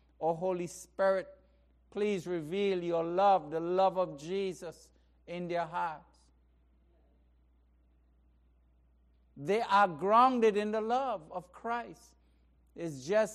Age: 60-79